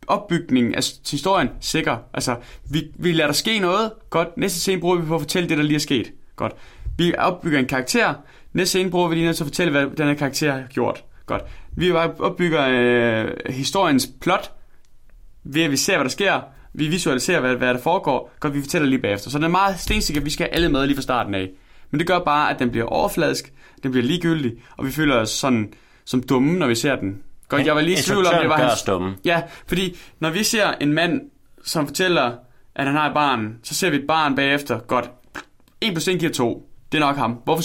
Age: 20-39